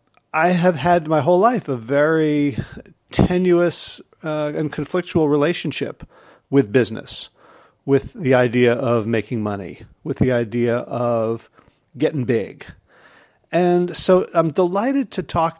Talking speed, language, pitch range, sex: 125 wpm, English, 125-165 Hz, male